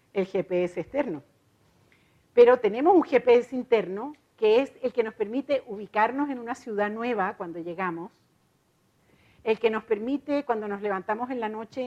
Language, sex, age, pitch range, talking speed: Spanish, female, 50-69, 195-250 Hz, 155 wpm